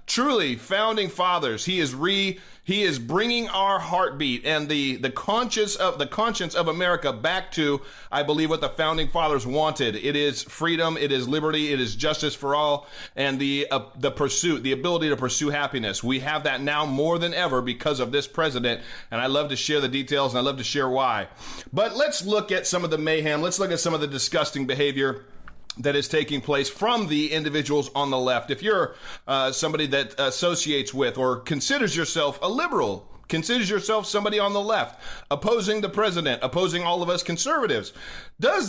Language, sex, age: English, male, 30-49